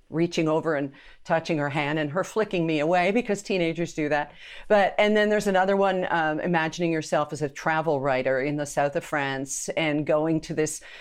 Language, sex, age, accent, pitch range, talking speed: English, female, 50-69, American, 160-200 Hz, 200 wpm